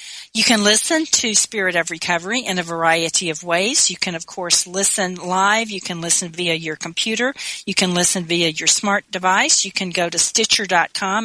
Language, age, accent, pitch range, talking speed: English, 40-59, American, 175-205 Hz, 190 wpm